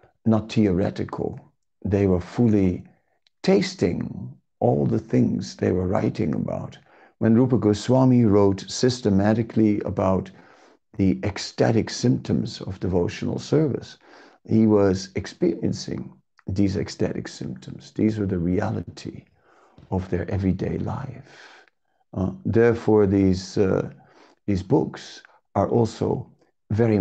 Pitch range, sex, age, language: 95-110 Hz, male, 50-69, English